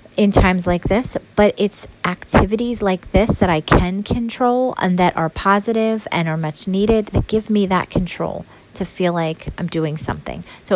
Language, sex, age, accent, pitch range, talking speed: English, female, 40-59, American, 165-210 Hz, 185 wpm